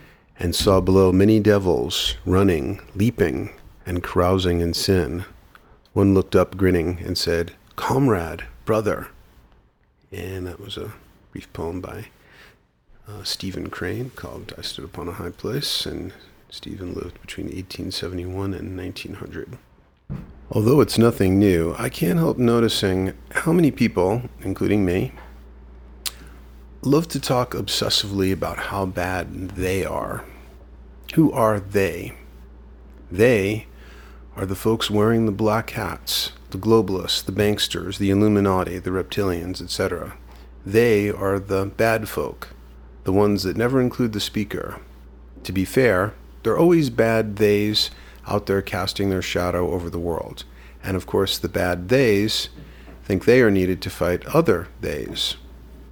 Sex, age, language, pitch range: male, 40-59, English, 85-105 Hz